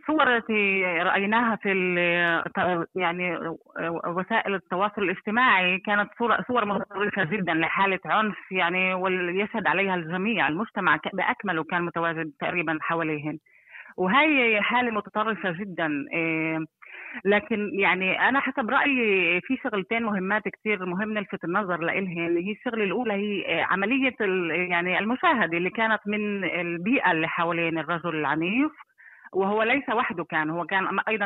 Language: Arabic